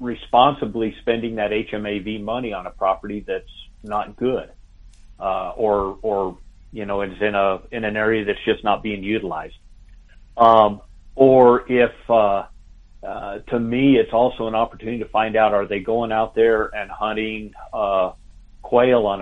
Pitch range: 95-115 Hz